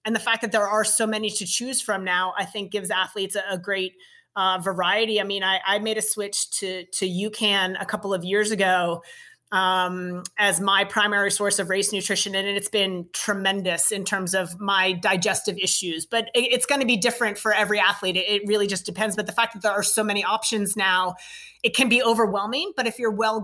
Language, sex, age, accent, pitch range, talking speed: English, female, 30-49, American, 195-225 Hz, 225 wpm